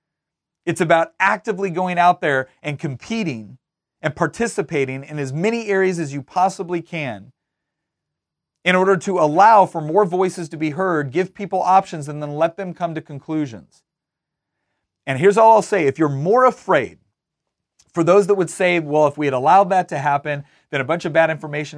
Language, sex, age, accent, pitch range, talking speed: English, male, 40-59, American, 145-180 Hz, 180 wpm